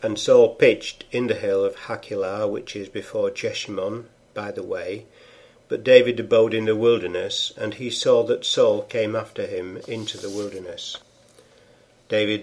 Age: 60-79